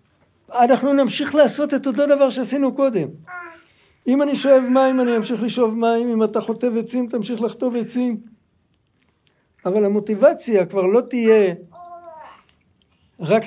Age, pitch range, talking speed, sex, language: 60-79, 200-255 Hz, 135 wpm, male, Hebrew